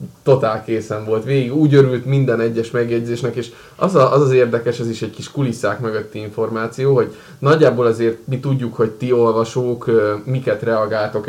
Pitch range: 110-130 Hz